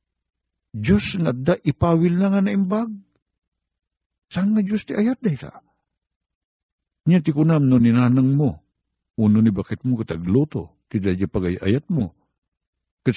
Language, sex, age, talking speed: Filipino, male, 50-69, 130 wpm